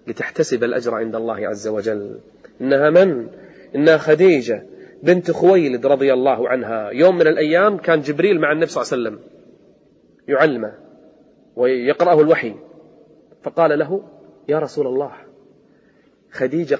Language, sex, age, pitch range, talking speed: Arabic, male, 30-49, 130-175 Hz, 125 wpm